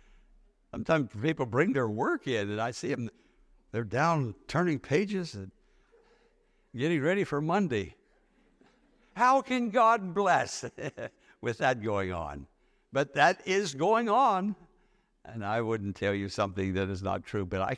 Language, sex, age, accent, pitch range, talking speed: English, male, 60-79, American, 105-175 Hz, 150 wpm